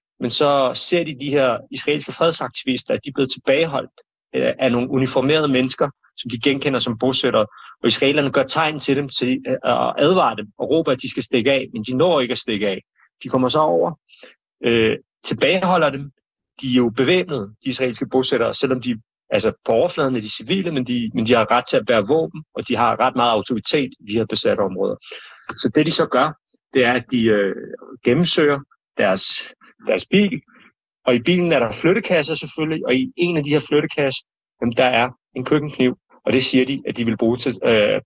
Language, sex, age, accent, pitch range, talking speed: Danish, male, 30-49, native, 125-150 Hz, 210 wpm